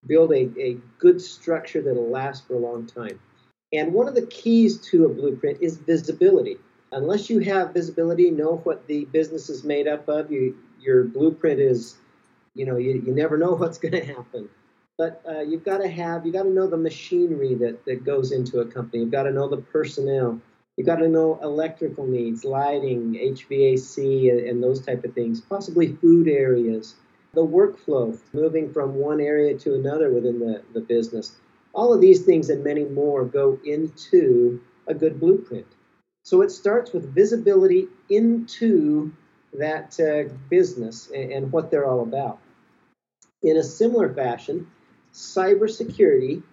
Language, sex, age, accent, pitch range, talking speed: English, male, 50-69, American, 135-185 Hz, 170 wpm